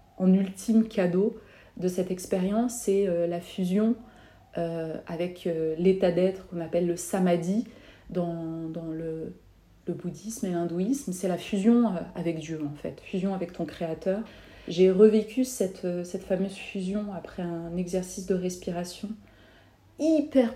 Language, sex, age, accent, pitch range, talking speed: French, female, 30-49, French, 180-210 Hz, 150 wpm